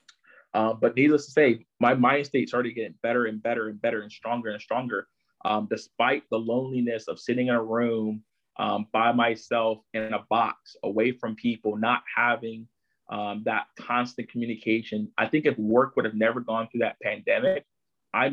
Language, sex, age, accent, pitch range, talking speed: English, male, 20-39, American, 110-120 Hz, 180 wpm